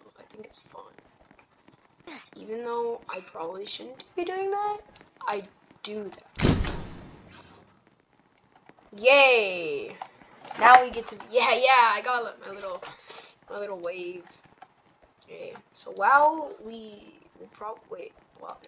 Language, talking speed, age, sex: English, 125 wpm, 10-29, female